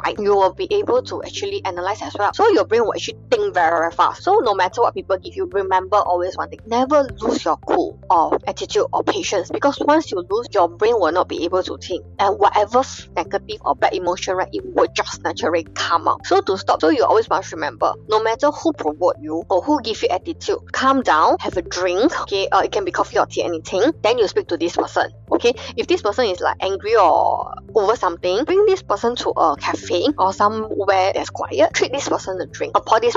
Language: English